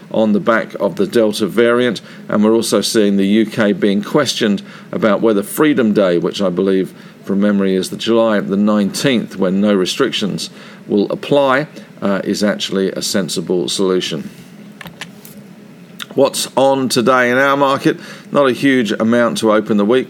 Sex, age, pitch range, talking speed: male, 50-69, 105-145 Hz, 160 wpm